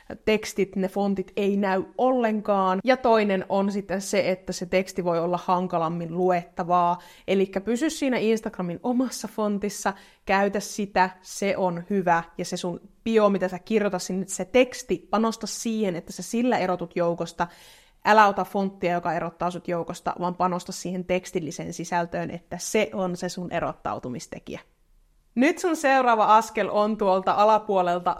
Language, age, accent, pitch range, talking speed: Finnish, 30-49, native, 185-220 Hz, 150 wpm